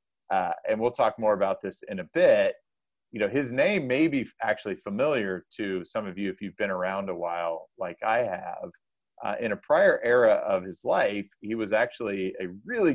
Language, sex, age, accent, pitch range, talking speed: English, male, 30-49, American, 95-110 Hz, 205 wpm